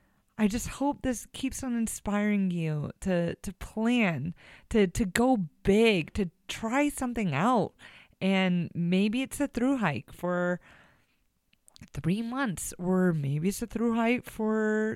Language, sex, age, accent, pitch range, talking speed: English, female, 30-49, American, 170-230 Hz, 140 wpm